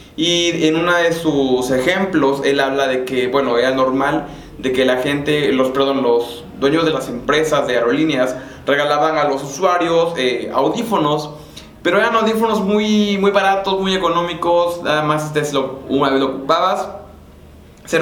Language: Spanish